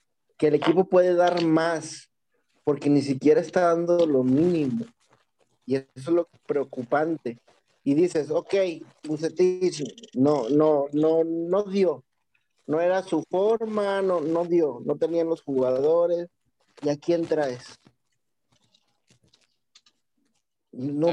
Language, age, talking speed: Spanish, 50-69, 125 wpm